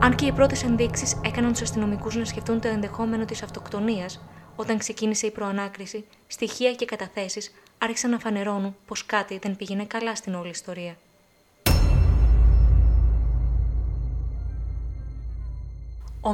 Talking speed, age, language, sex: 120 wpm, 20-39, Greek, female